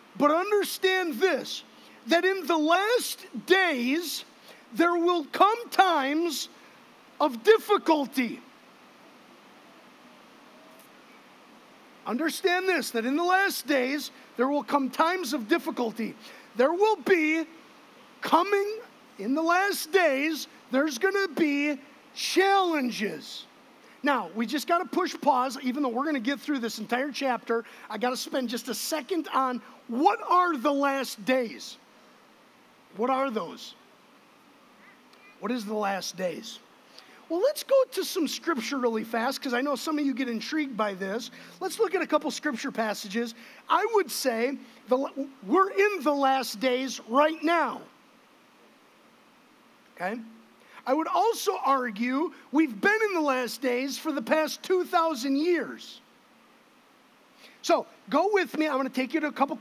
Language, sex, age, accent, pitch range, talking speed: English, male, 50-69, American, 250-325 Hz, 145 wpm